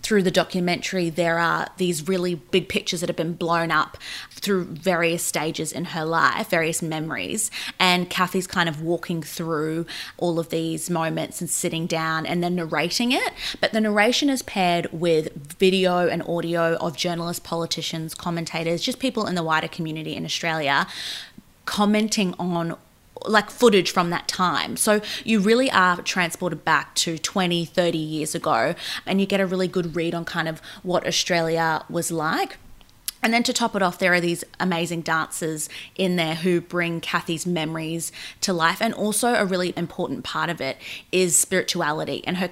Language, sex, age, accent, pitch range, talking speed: English, female, 20-39, Australian, 165-190 Hz, 175 wpm